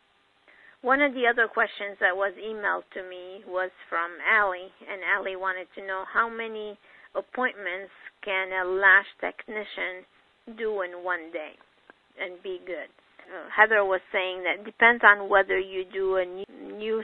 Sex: female